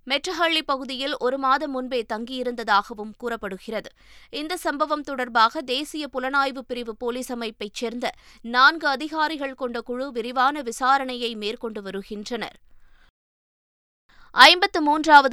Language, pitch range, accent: Tamil, 235-305 Hz, native